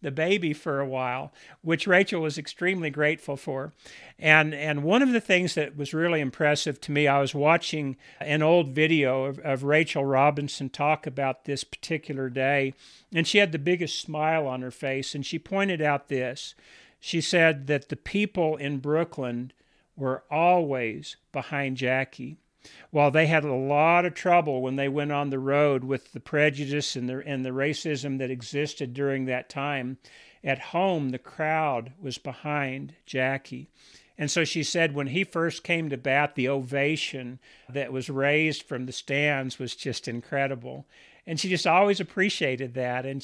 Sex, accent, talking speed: male, American, 170 wpm